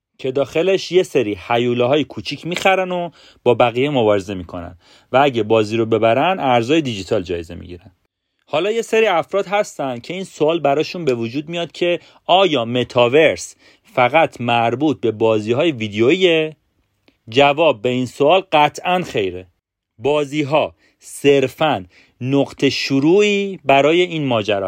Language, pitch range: Persian, 115-155 Hz